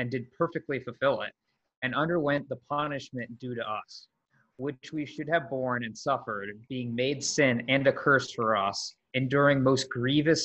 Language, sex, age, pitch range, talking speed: English, male, 30-49, 120-140 Hz, 170 wpm